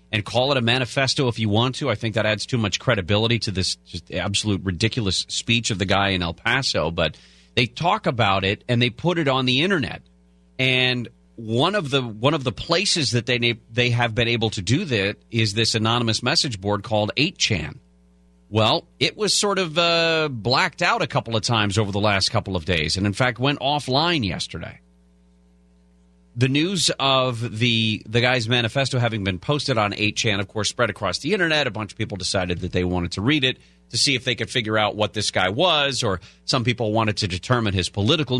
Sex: male